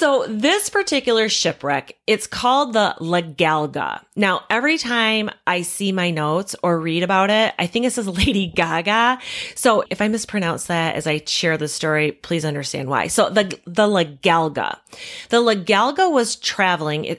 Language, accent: English, American